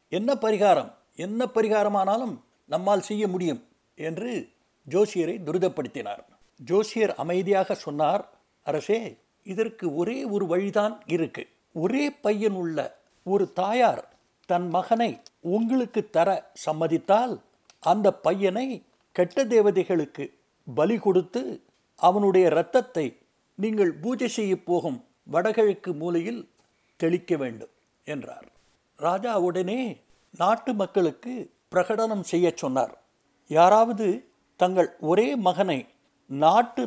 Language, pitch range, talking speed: Tamil, 170-220 Hz, 95 wpm